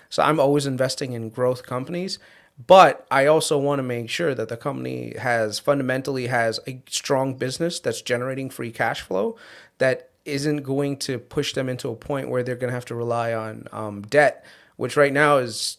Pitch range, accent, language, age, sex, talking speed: 125-160 Hz, American, English, 30-49, male, 195 wpm